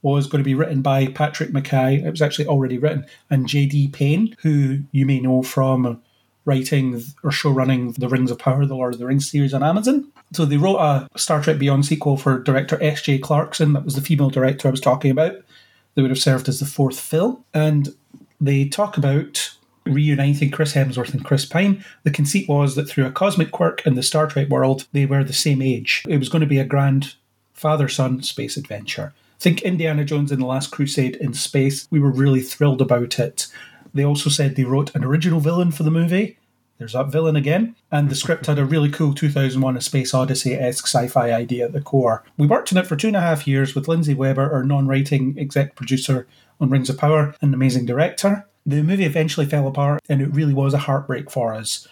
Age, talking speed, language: 30-49, 215 wpm, English